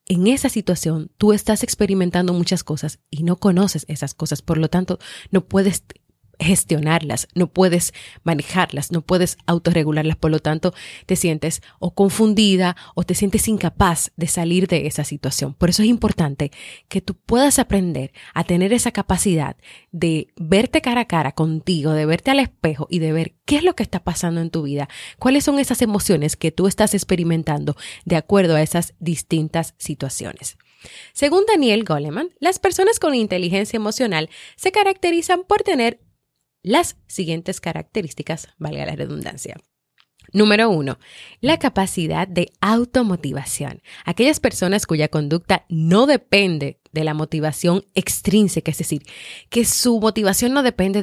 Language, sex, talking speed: Spanish, female, 155 wpm